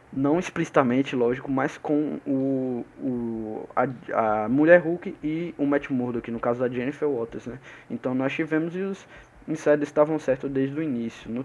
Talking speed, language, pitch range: 175 wpm, Portuguese, 130-155 Hz